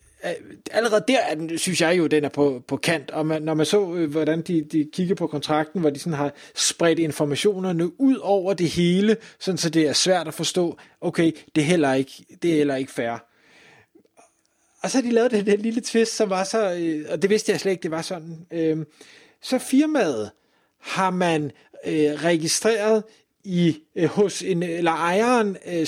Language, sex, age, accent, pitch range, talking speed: Danish, male, 30-49, native, 160-220 Hz, 180 wpm